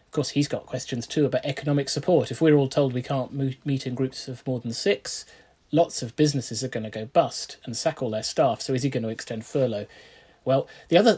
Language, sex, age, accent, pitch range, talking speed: English, male, 30-49, British, 130-165 Hz, 240 wpm